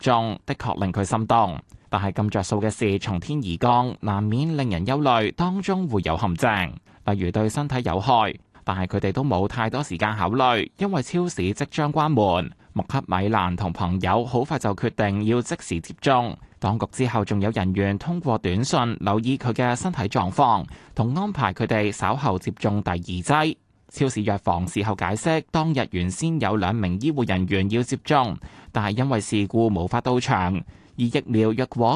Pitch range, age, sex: 100-130 Hz, 20-39, male